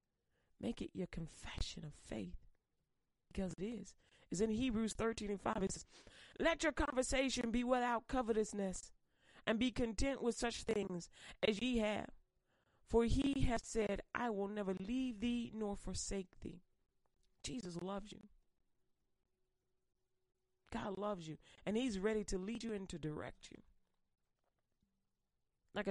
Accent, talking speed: American, 140 wpm